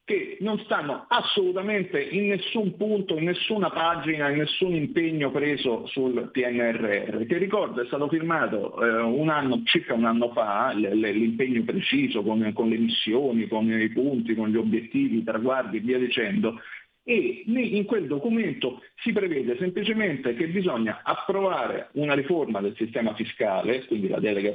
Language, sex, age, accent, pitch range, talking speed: Italian, male, 50-69, native, 120-200 Hz, 155 wpm